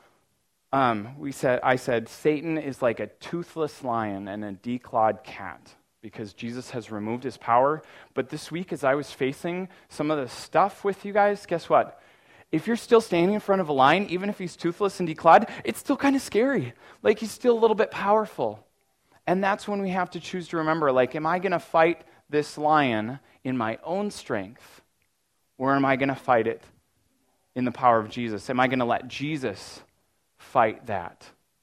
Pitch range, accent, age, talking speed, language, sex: 115-155 Hz, American, 30-49, 200 wpm, English, male